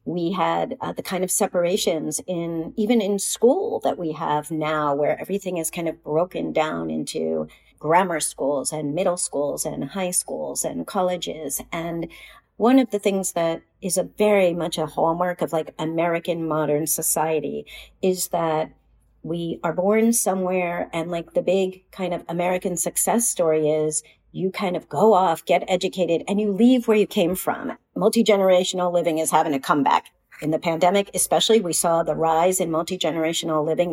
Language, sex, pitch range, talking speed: English, female, 160-195 Hz, 170 wpm